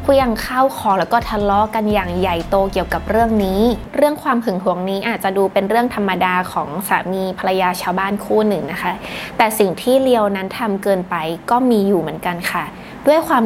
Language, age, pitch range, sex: Thai, 20-39, 185-230 Hz, female